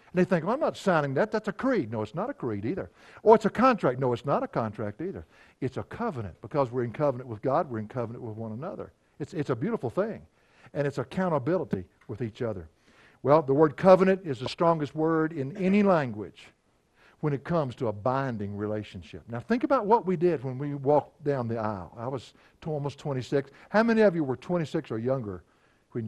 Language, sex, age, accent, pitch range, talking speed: English, male, 60-79, American, 115-180 Hz, 220 wpm